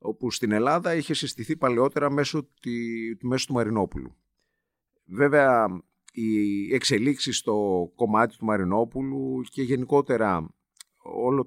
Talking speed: 110 wpm